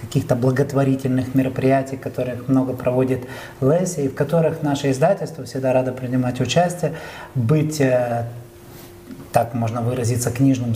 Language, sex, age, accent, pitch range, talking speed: Russian, male, 30-49, native, 125-155 Hz, 115 wpm